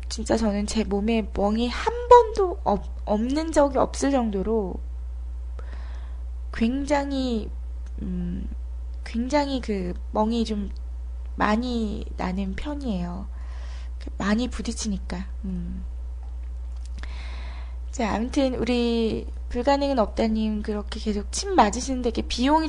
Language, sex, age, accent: Korean, female, 20-39, native